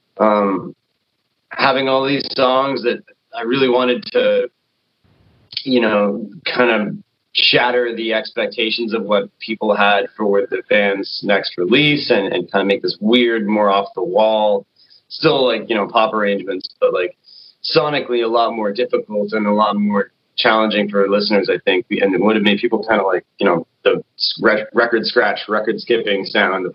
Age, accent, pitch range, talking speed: 30-49, American, 105-135 Hz, 175 wpm